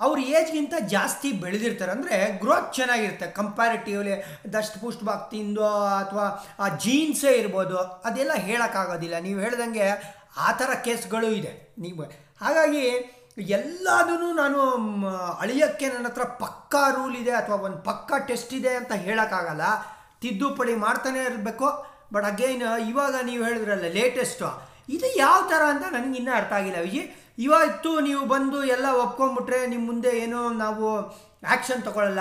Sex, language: male, Kannada